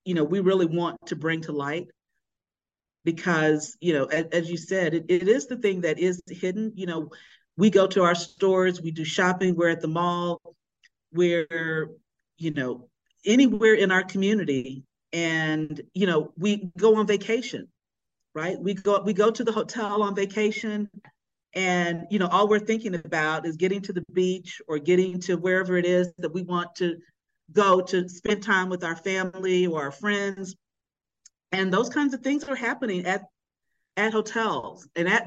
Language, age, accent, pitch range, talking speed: English, 40-59, American, 165-205 Hz, 180 wpm